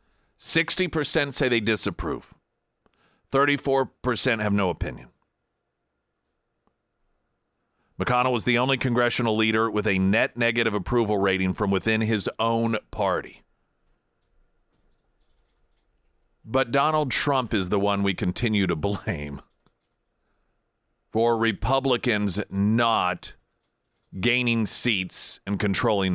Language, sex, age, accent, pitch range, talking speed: English, male, 40-59, American, 105-145 Hz, 95 wpm